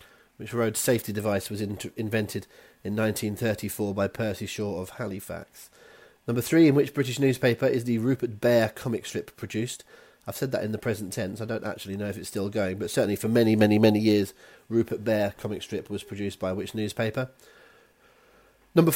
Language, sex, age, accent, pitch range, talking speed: English, male, 30-49, British, 105-125 Hz, 185 wpm